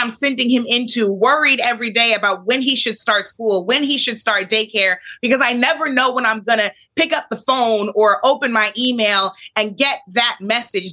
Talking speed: 210 wpm